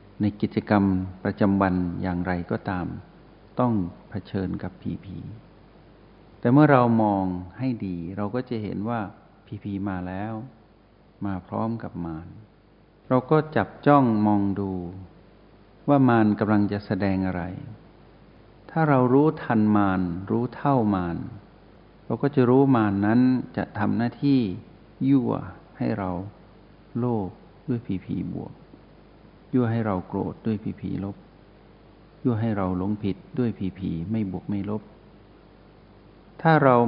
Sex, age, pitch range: male, 60-79, 95-120 Hz